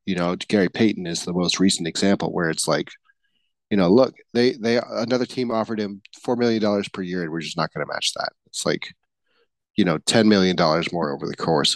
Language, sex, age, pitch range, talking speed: English, male, 30-49, 95-115 Hz, 230 wpm